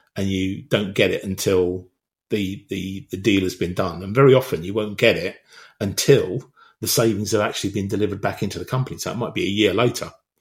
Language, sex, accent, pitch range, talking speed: English, male, British, 105-140 Hz, 220 wpm